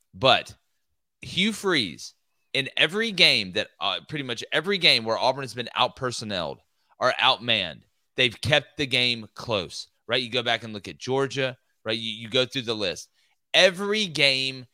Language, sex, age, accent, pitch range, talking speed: English, male, 30-49, American, 110-155 Hz, 165 wpm